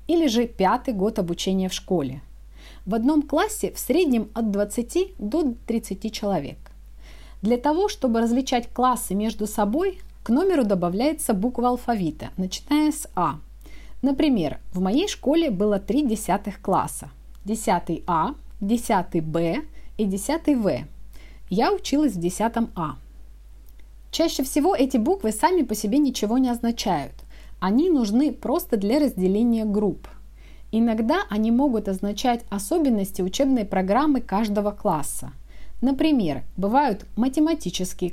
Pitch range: 185-265 Hz